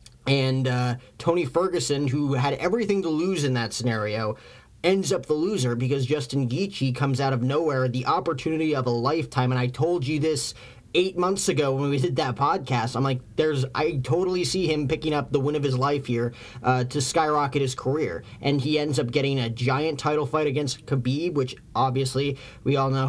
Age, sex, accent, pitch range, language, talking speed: 30-49, male, American, 125-150 Hz, English, 200 wpm